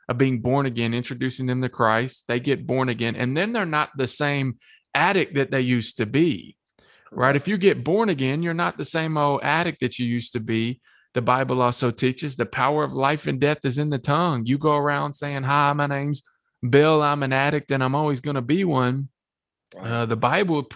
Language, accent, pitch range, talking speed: English, American, 120-145 Hz, 220 wpm